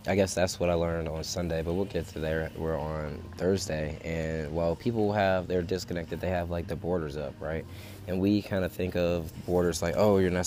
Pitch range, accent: 80-95 Hz, American